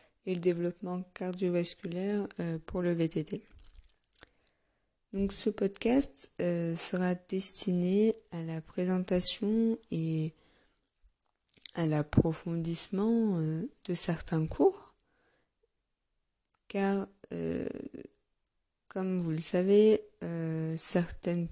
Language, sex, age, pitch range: French, female, 20-39, 160-195 Hz